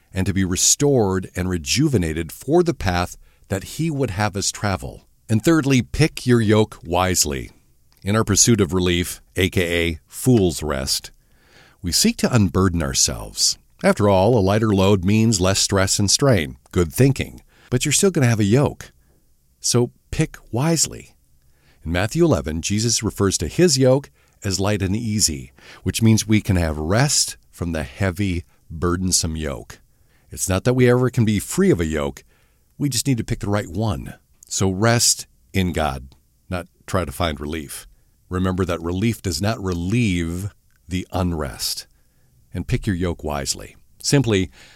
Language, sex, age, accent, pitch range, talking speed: English, male, 50-69, American, 85-115 Hz, 165 wpm